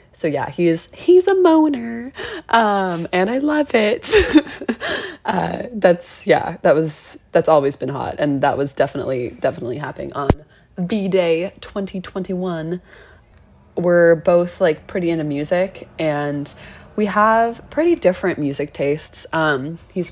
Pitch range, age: 150-190 Hz, 20-39